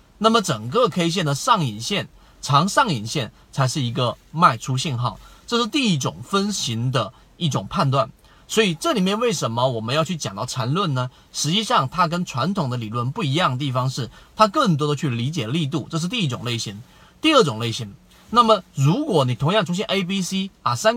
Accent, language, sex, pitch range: native, Chinese, male, 130-195 Hz